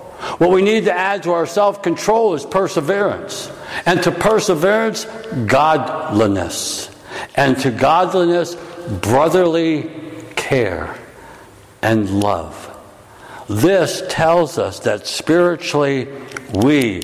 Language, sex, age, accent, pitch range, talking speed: English, male, 60-79, American, 125-180 Hz, 95 wpm